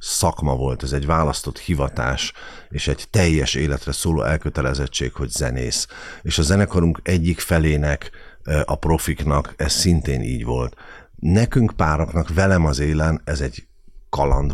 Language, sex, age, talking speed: Hungarian, male, 50-69, 135 wpm